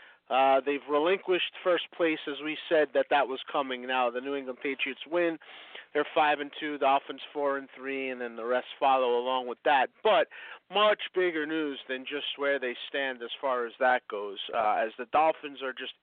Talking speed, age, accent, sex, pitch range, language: 205 wpm, 40-59, American, male, 125-150 Hz, English